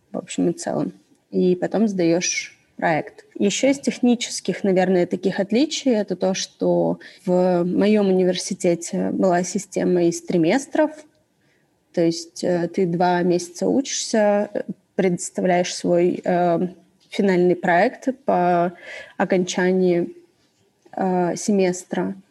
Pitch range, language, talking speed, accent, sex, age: 180-220 Hz, Russian, 105 wpm, native, female, 20-39